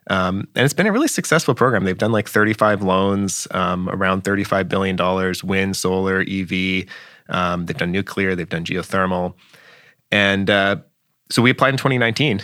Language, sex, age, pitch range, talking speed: English, male, 20-39, 95-115 Hz, 165 wpm